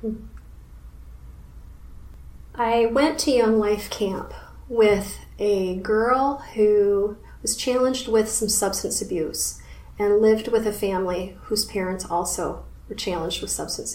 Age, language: 30-49, English